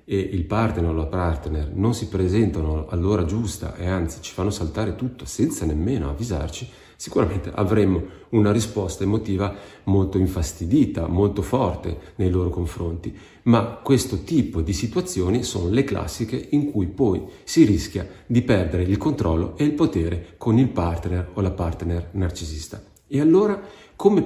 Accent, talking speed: native, 155 wpm